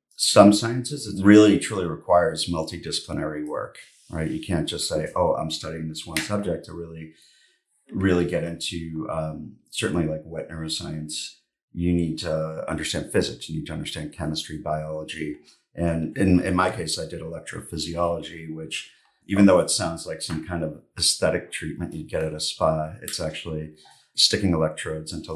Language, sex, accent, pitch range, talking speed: English, male, American, 80-95 Hz, 165 wpm